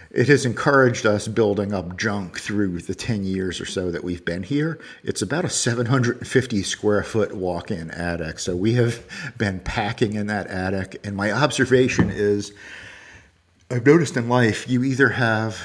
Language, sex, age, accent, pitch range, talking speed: English, male, 50-69, American, 95-125 Hz, 170 wpm